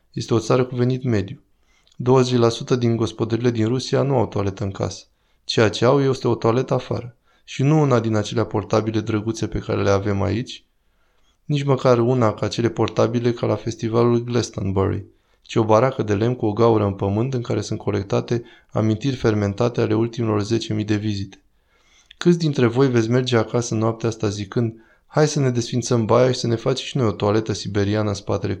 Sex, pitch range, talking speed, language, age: male, 110-125 Hz, 190 wpm, Romanian, 20-39